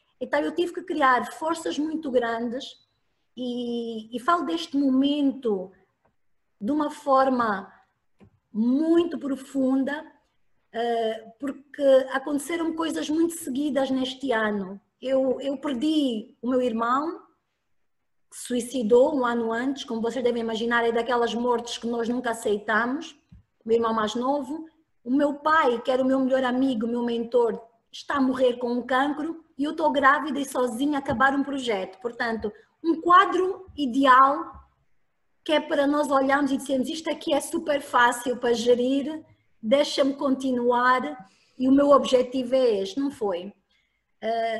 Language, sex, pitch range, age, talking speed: Portuguese, female, 240-290 Hz, 20-39, 145 wpm